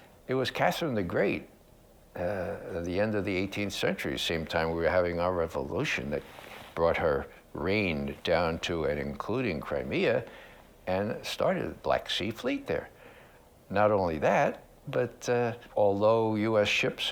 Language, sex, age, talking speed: English, male, 60-79, 155 wpm